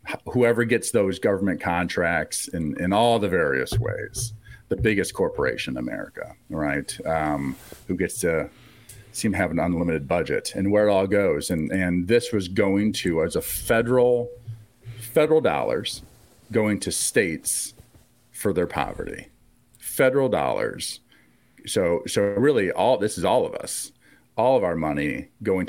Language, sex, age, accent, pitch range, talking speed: English, male, 40-59, American, 85-115 Hz, 150 wpm